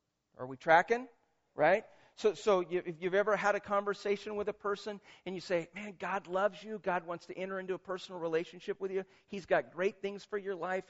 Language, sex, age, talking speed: English, male, 50-69, 220 wpm